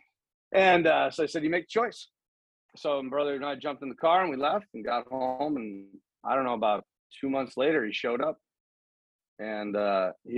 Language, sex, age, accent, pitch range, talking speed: English, male, 30-49, American, 100-135 Hz, 220 wpm